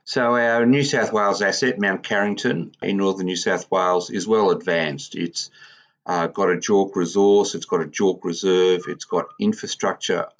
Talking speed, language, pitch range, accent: 175 wpm, English, 85-95 Hz, Australian